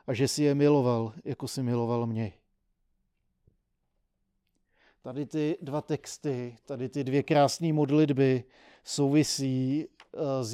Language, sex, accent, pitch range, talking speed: Czech, male, native, 120-140 Hz, 115 wpm